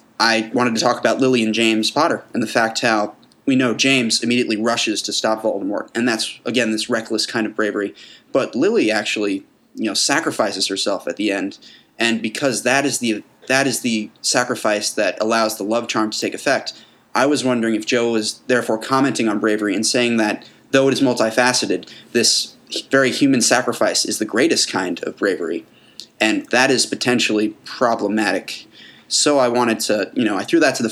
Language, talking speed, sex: English, 190 wpm, male